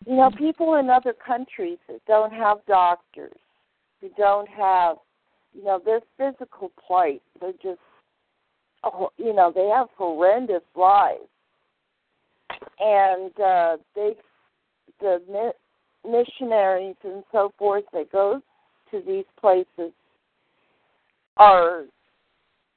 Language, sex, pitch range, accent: English, female, 195-275 Hz, American